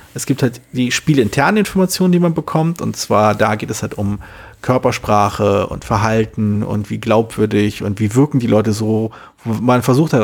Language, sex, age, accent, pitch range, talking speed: German, male, 40-59, German, 105-135 Hz, 180 wpm